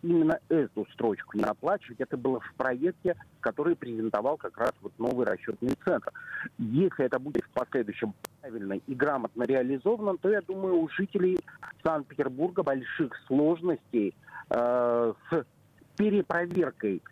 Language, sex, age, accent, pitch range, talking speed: Russian, male, 50-69, native, 125-175 Hz, 125 wpm